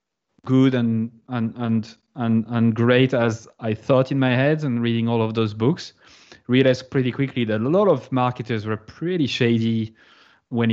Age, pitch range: 20-39, 110-130 Hz